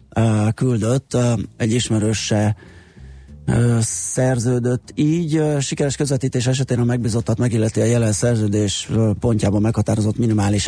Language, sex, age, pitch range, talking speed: Hungarian, male, 30-49, 105-120 Hz, 95 wpm